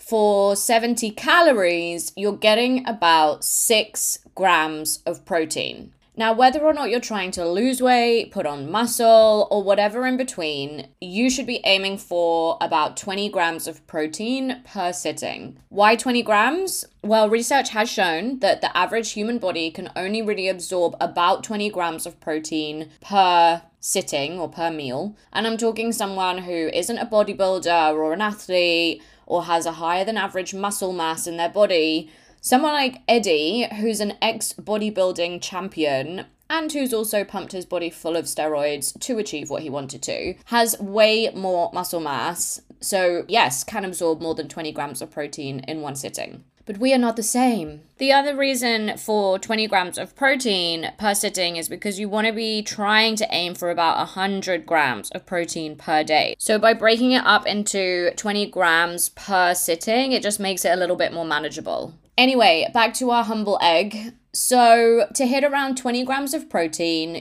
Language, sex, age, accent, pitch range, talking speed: English, female, 20-39, British, 170-225 Hz, 170 wpm